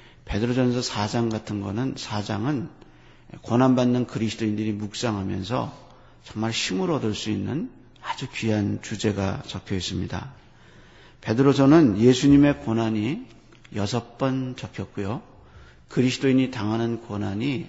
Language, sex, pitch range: Korean, male, 105-130 Hz